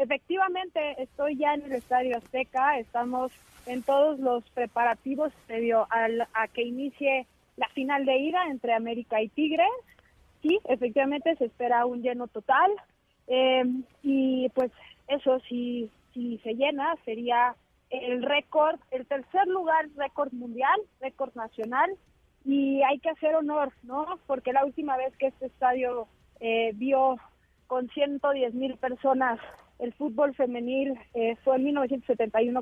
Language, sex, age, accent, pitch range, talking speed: Spanish, female, 30-49, Mexican, 235-275 Hz, 140 wpm